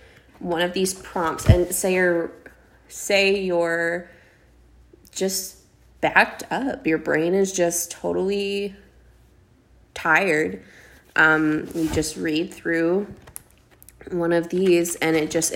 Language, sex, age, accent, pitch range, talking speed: English, female, 20-39, American, 155-195 Hz, 110 wpm